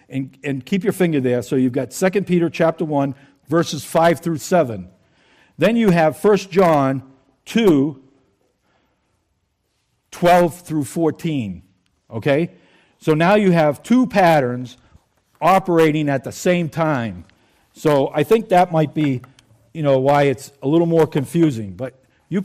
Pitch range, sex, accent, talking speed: 125-180 Hz, male, American, 145 wpm